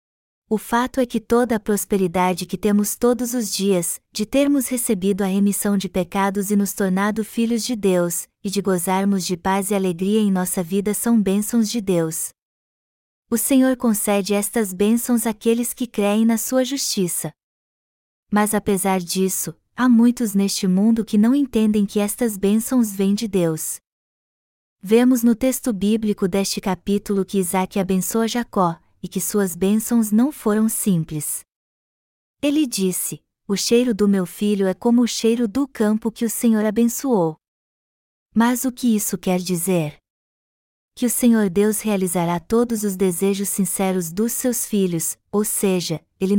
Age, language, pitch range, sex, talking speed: 20-39, Portuguese, 190-230 Hz, female, 155 wpm